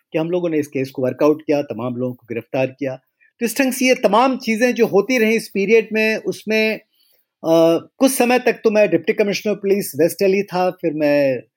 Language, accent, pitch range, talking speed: Hindi, native, 130-195 Hz, 215 wpm